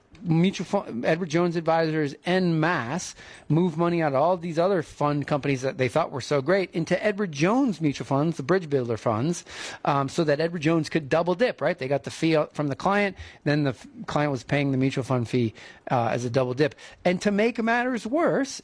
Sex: male